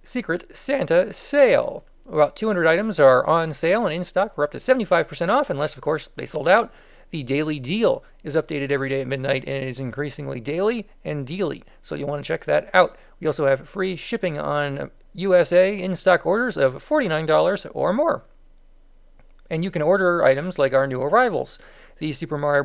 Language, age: English, 40-59